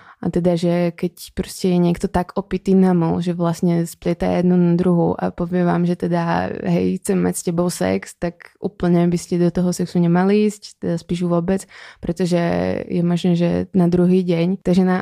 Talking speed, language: 195 wpm, Czech